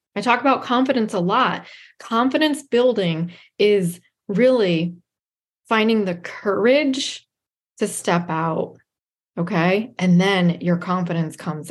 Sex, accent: female, American